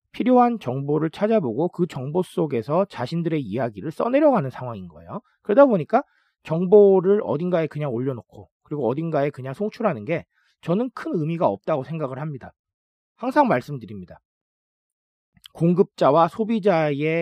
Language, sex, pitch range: Korean, male, 130-200 Hz